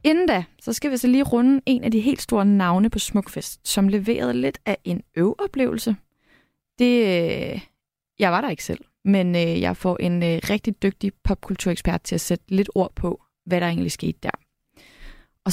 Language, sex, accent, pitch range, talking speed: Danish, female, native, 185-235 Hz, 180 wpm